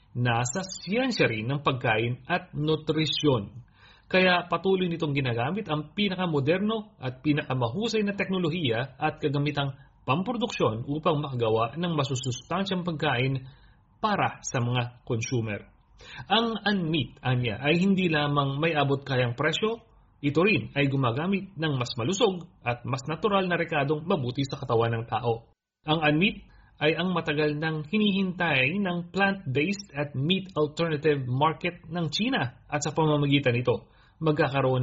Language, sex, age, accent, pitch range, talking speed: Filipino, male, 40-59, native, 130-175 Hz, 130 wpm